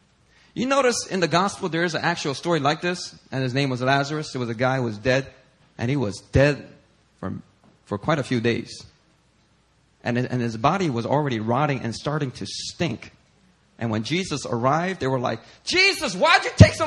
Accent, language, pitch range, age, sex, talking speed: American, English, 135-225 Hz, 40-59, male, 205 wpm